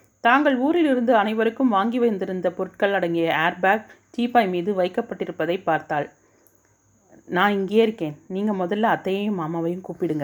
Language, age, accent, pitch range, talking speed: Tamil, 30-49, native, 170-205 Hz, 115 wpm